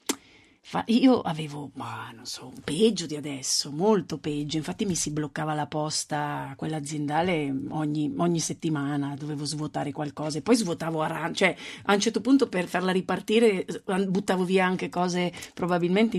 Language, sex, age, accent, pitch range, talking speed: Italian, female, 40-59, native, 160-220 Hz, 155 wpm